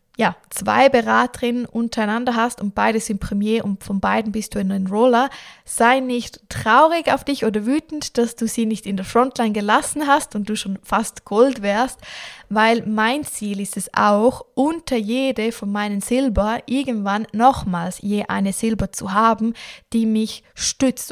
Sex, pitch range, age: female, 205-240 Hz, 20-39